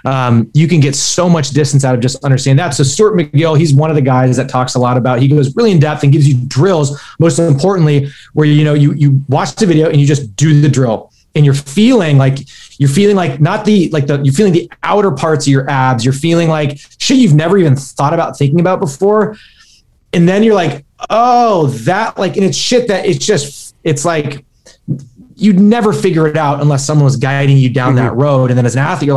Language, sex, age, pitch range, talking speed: English, male, 20-39, 140-170 Hz, 235 wpm